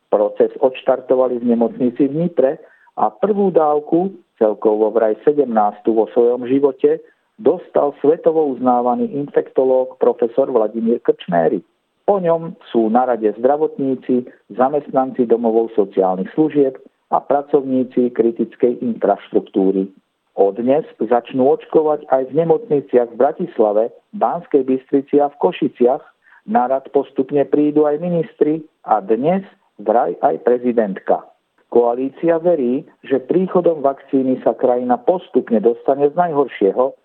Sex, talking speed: male, 115 wpm